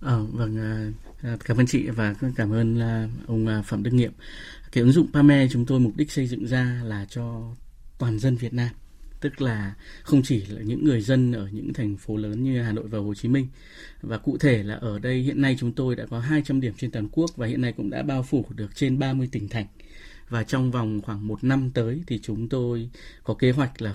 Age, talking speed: 20-39, 230 wpm